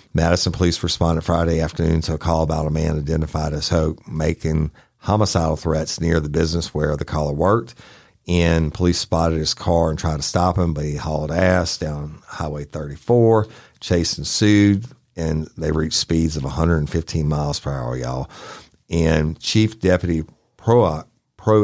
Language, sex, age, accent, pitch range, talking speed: English, male, 50-69, American, 75-85 Hz, 160 wpm